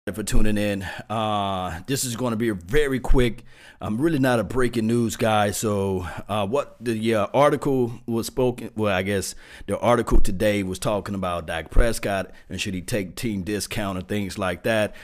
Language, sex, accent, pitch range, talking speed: English, male, American, 95-115 Hz, 190 wpm